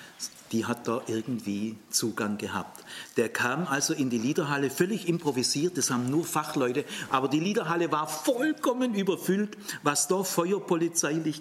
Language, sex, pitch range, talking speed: German, male, 125-170 Hz, 140 wpm